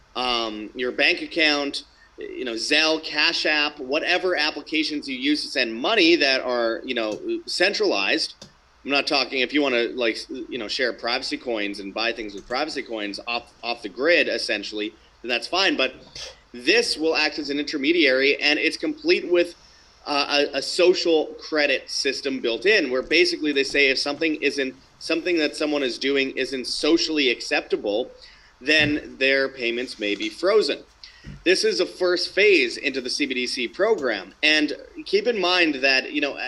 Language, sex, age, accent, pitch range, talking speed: English, male, 30-49, American, 120-160 Hz, 170 wpm